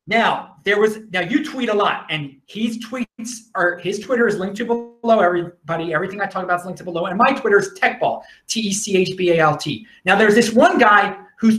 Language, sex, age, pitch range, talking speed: English, male, 30-49, 175-235 Hz, 240 wpm